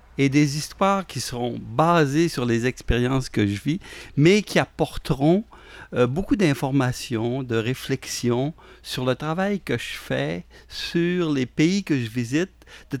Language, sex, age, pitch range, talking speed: French, male, 50-69, 120-165 Hz, 150 wpm